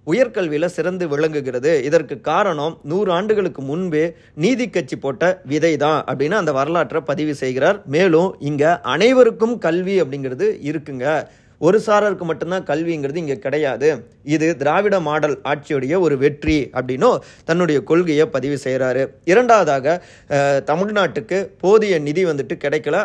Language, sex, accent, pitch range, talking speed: Tamil, male, native, 140-180 Hz, 115 wpm